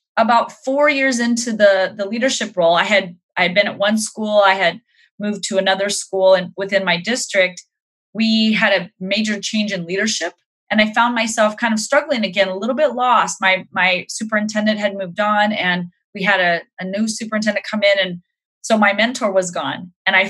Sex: female